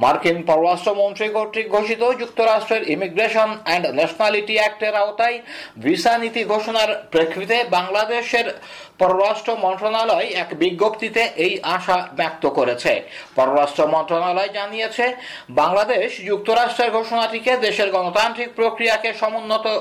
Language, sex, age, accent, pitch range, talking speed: Bengali, male, 50-69, native, 195-225 Hz, 95 wpm